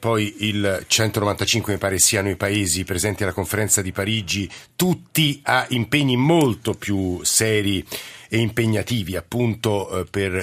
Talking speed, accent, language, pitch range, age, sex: 130 wpm, native, Italian, 100-130 Hz, 50-69, male